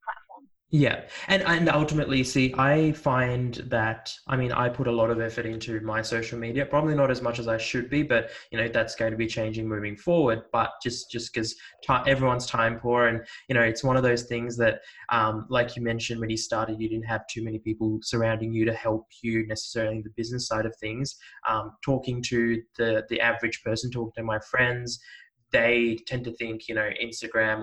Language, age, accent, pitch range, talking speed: English, 20-39, Australian, 110-125 Hz, 210 wpm